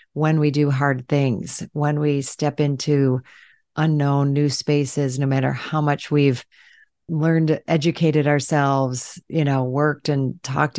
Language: English